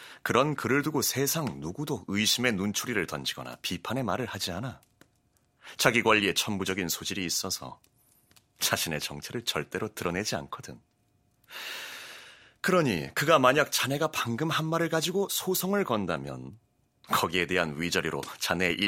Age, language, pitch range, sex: 30-49, Korean, 95-140 Hz, male